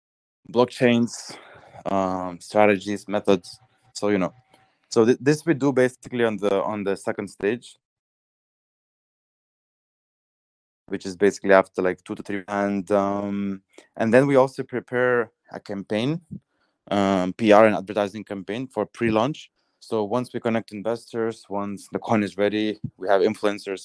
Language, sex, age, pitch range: English, male, 20-39, 95-115 Hz